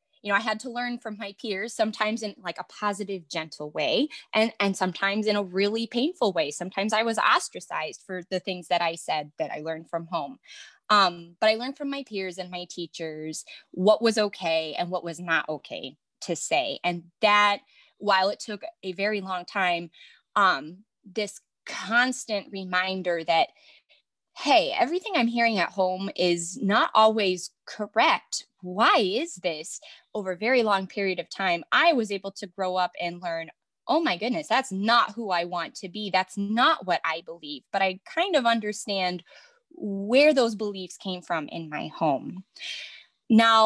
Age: 20-39